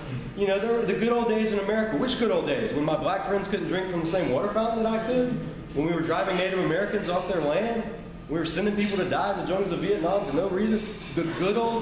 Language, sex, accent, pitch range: English, male, American, 150-195 Hz